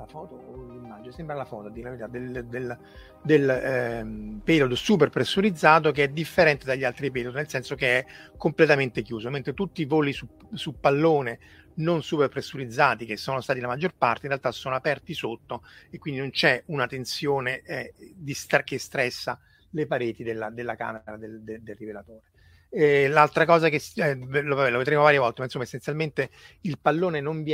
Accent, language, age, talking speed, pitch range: native, Italian, 30-49, 170 wpm, 115-150 Hz